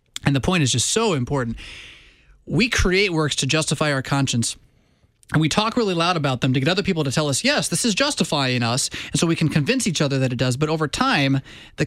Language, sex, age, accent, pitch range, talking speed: English, male, 20-39, American, 130-170 Hz, 240 wpm